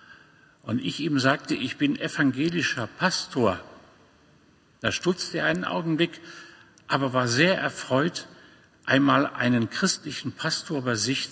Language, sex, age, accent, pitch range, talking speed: German, male, 50-69, German, 130-170 Hz, 120 wpm